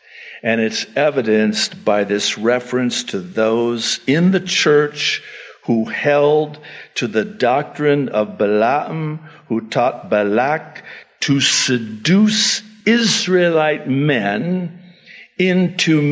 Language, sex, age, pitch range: English, male, 60-79, 105-155 Hz